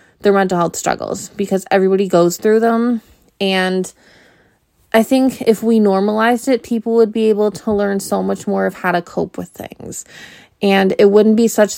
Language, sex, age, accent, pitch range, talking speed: English, female, 20-39, American, 190-230 Hz, 185 wpm